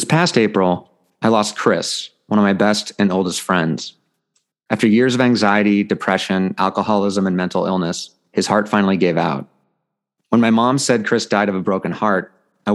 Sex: male